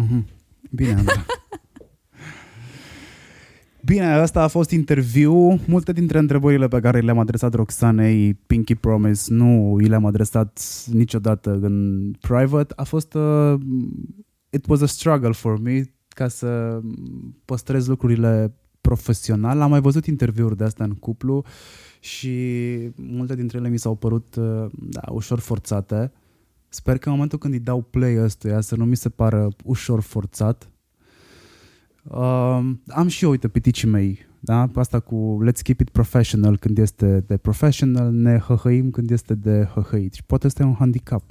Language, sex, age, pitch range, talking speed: Romanian, male, 20-39, 105-130 Hz, 145 wpm